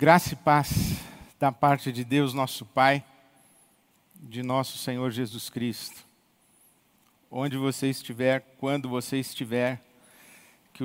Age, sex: 50-69, male